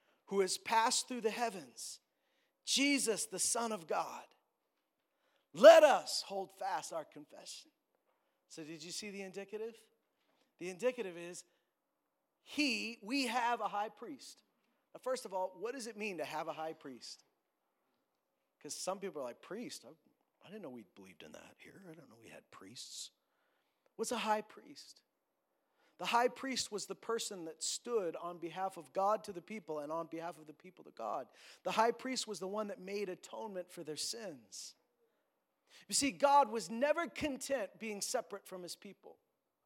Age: 40-59